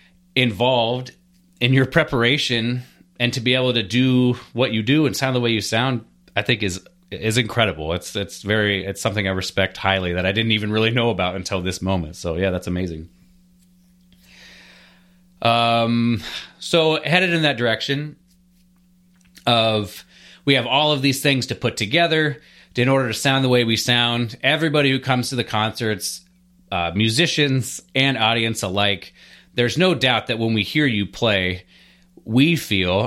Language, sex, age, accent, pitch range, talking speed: English, male, 30-49, American, 105-135 Hz, 165 wpm